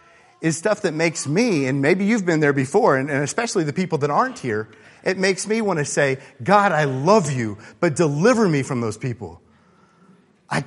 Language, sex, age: English, male, 40-59